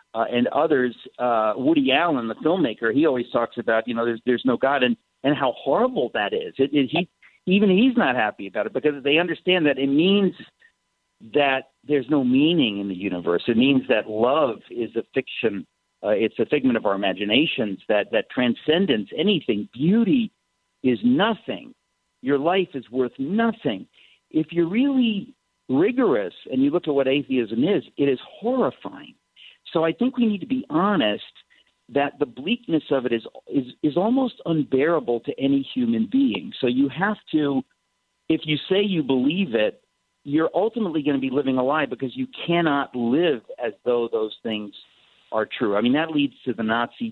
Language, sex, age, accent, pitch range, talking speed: English, male, 50-69, American, 125-200 Hz, 180 wpm